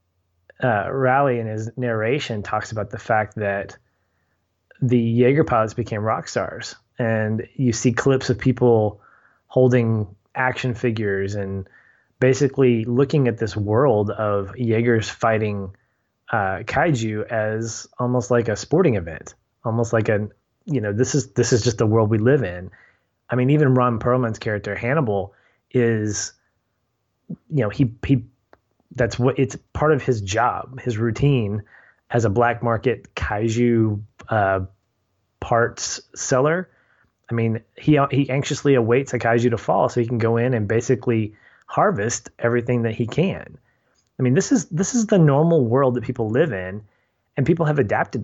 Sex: male